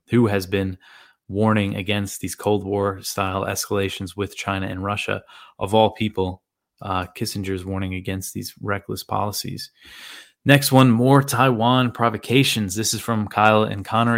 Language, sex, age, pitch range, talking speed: English, male, 20-39, 100-115 Hz, 150 wpm